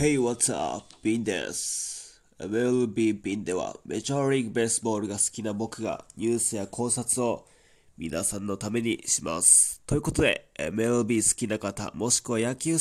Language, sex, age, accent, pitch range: Japanese, male, 20-39, native, 110-140 Hz